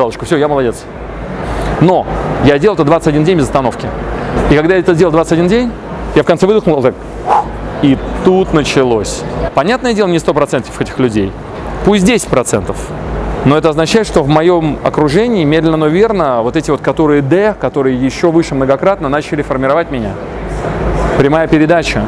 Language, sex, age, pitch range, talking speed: Russian, male, 30-49, 135-170 Hz, 165 wpm